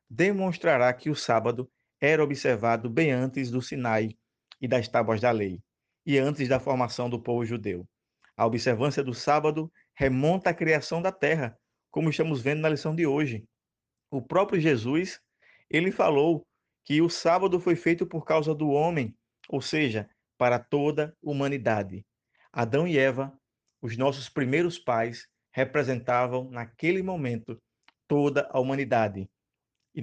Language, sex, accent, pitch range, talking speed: Portuguese, male, Brazilian, 120-155 Hz, 145 wpm